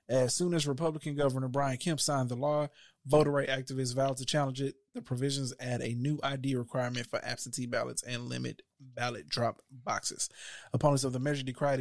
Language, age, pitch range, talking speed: English, 20-39, 120-140 Hz, 190 wpm